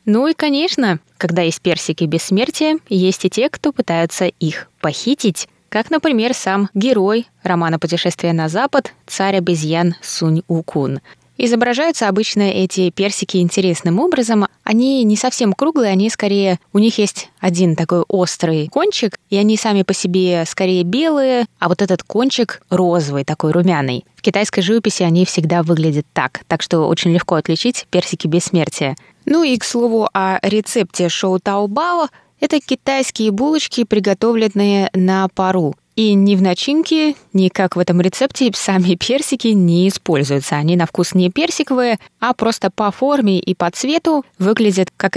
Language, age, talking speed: Russian, 20-39, 150 wpm